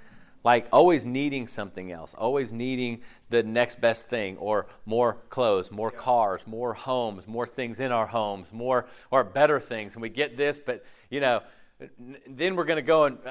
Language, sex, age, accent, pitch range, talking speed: English, male, 40-59, American, 115-150 Hz, 185 wpm